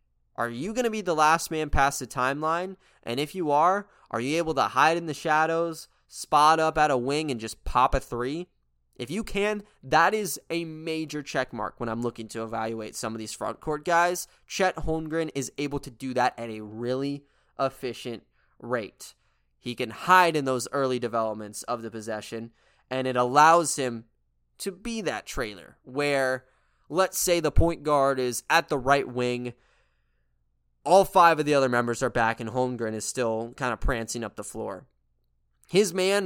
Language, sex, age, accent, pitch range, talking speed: English, male, 20-39, American, 110-155 Hz, 185 wpm